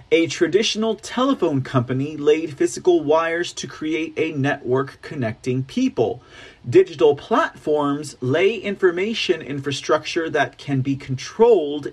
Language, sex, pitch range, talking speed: English, male, 130-210 Hz, 110 wpm